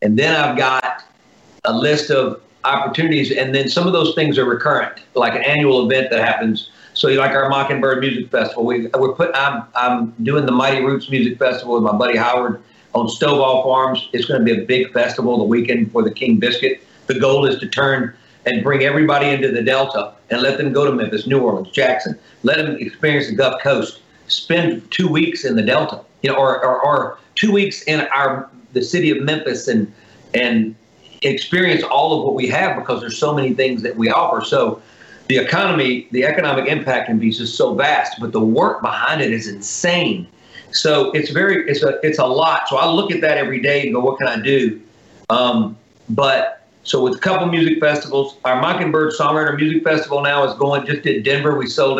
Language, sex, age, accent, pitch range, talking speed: English, male, 50-69, American, 125-155 Hz, 205 wpm